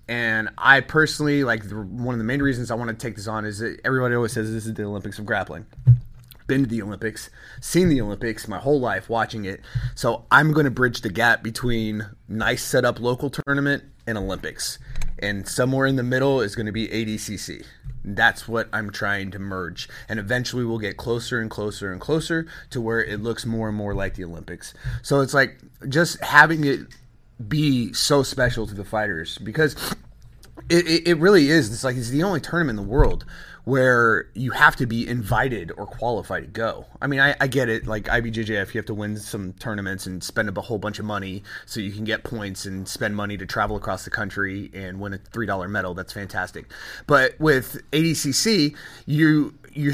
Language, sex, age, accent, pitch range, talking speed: English, male, 30-49, American, 105-135 Hz, 205 wpm